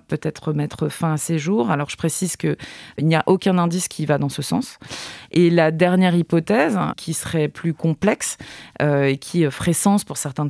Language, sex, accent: French, female, French